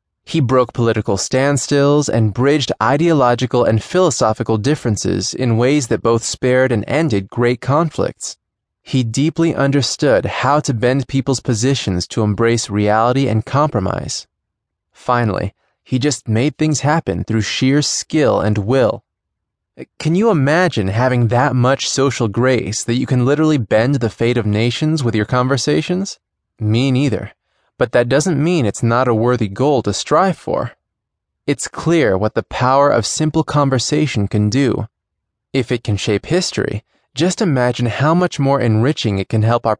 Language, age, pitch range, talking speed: English, 20-39, 110-140 Hz, 155 wpm